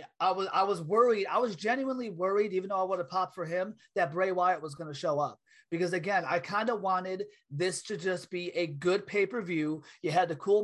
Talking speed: 235 wpm